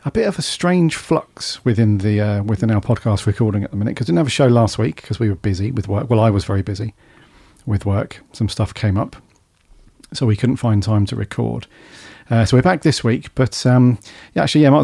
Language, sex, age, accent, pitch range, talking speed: English, male, 40-59, British, 110-135 Hz, 245 wpm